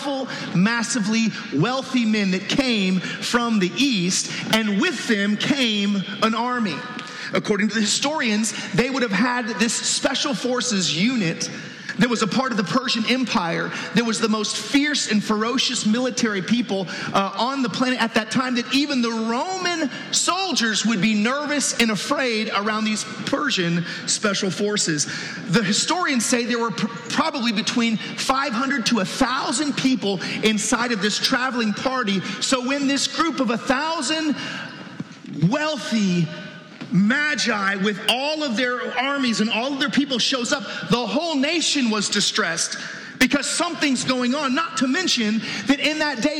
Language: English